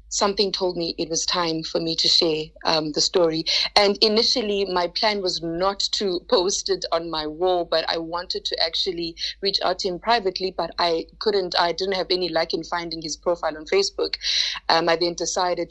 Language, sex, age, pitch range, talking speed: English, female, 30-49, 165-200 Hz, 200 wpm